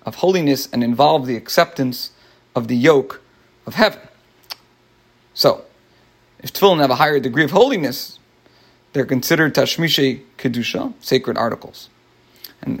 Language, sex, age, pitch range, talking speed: English, male, 40-59, 125-180 Hz, 125 wpm